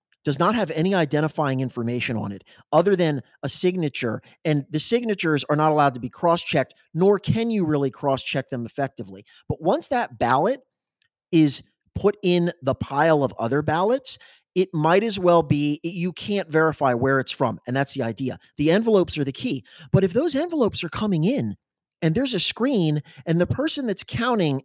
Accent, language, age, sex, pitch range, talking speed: American, English, 30-49, male, 130-175 Hz, 185 wpm